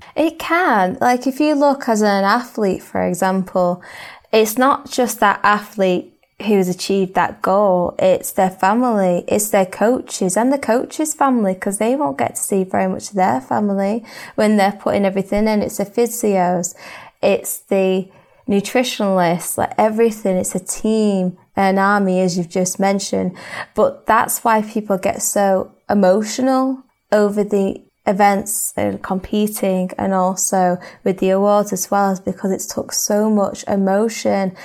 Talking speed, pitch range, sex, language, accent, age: 150 wpm, 190-225 Hz, female, English, British, 20-39